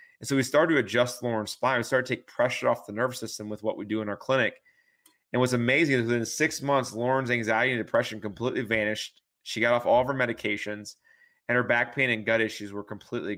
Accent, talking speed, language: American, 240 wpm, English